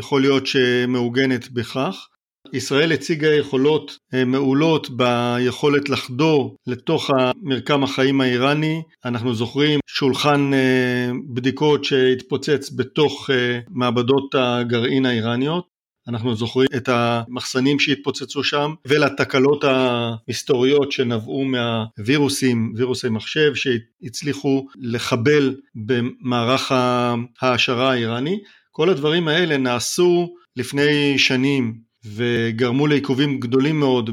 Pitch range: 125-145 Hz